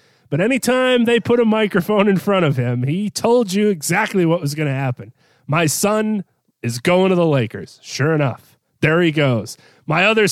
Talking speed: 190 wpm